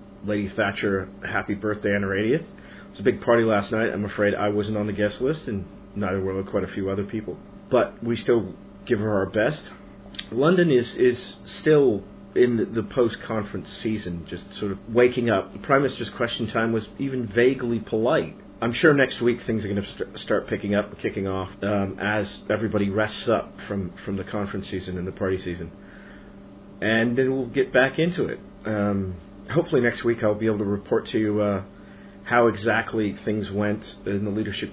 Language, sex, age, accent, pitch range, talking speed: English, male, 40-59, American, 100-120 Hz, 195 wpm